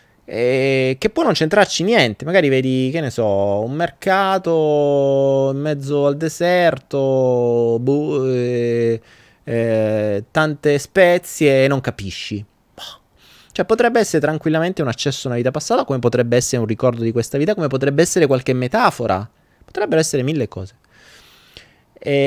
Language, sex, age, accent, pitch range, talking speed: Italian, male, 20-39, native, 110-150 Hz, 145 wpm